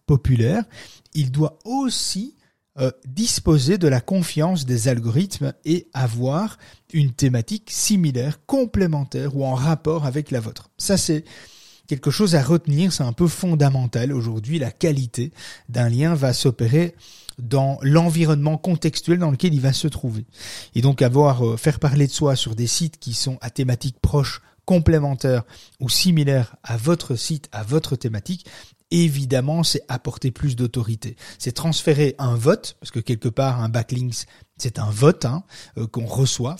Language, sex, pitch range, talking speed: French, male, 120-155 Hz, 155 wpm